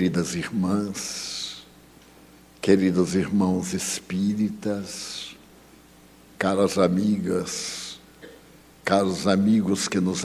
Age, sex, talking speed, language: 60-79, male, 65 wpm, Portuguese